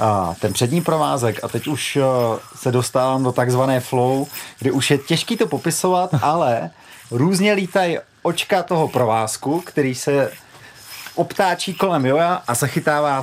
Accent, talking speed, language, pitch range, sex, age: native, 140 wpm, Czech, 115-150 Hz, male, 40-59